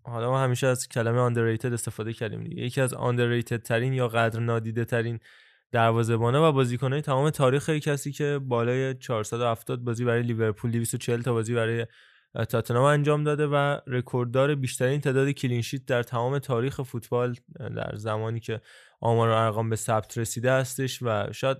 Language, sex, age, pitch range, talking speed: Persian, male, 20-39, 120-140 Hz, 165 wpm